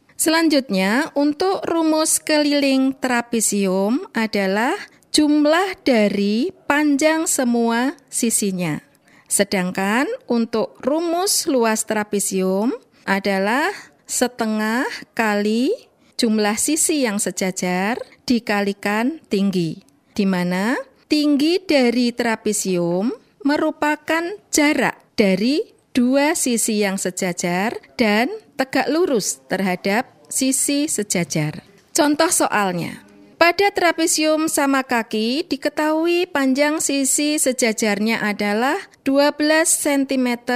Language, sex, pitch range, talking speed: Indonesian, female, 210-295 Hz, 80 wpm